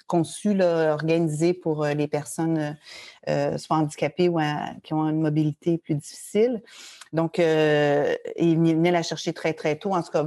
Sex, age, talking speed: female, 40-59, 165 wpm